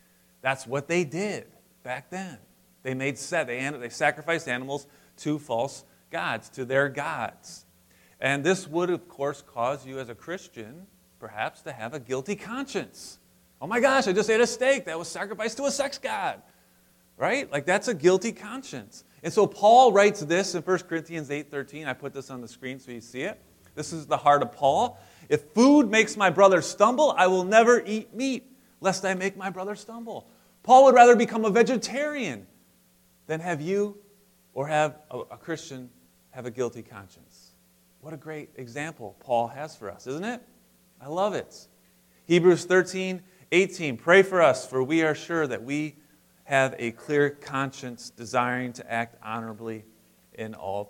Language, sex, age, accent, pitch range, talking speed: English, male, 30-49, American, 115-190 Hz, 175 wpm